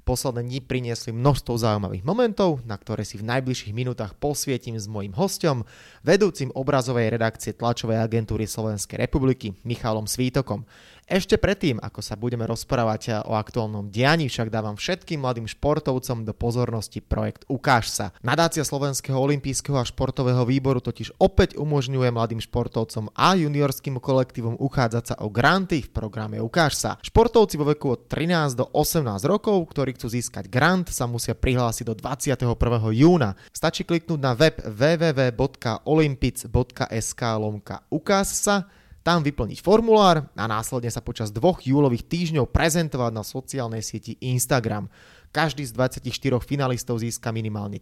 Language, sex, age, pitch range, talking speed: Slovak, male, 20-39, 115-145 Hz, 135 wpm